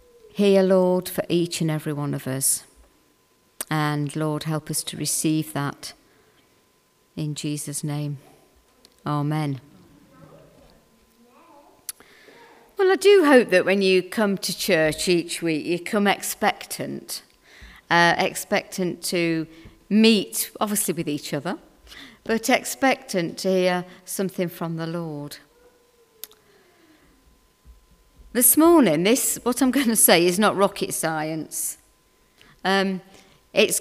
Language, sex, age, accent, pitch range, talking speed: English, female, 40-59, British, 155-210 Hz, 115 wpm